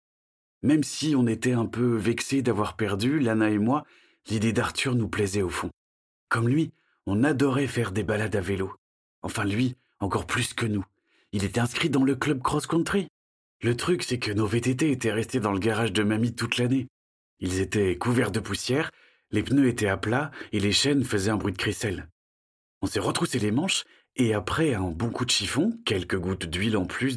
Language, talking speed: French, 200 wpm